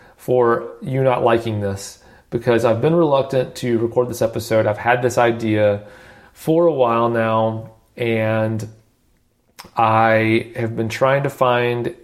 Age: 30-49